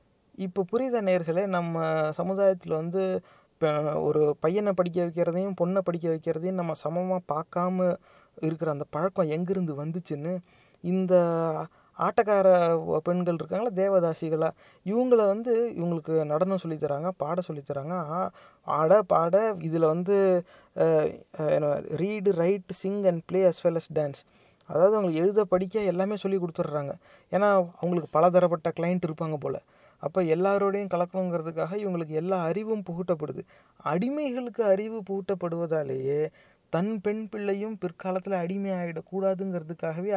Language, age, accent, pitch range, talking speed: Tamil, 30-49, native, 165-195 Hz, 115 wpm